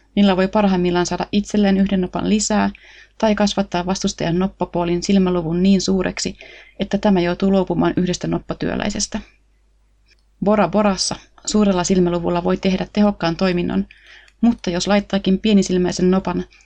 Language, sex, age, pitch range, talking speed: Finnish, female, 30-49, 180-210 Hz, 120 wpm